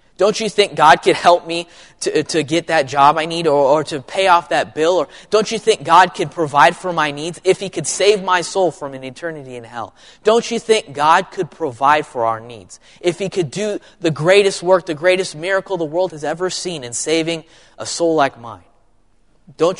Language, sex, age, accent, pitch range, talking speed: English, male, 20-39, American, 125-170 Hz, 220 wpm